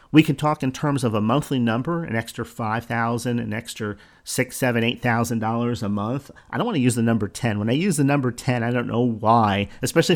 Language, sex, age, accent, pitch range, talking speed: English, male, 40-59, American, 115-150 Hz, 240 wpm